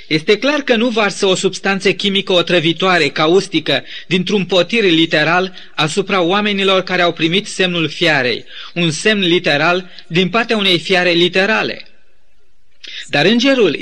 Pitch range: 175-220 Hz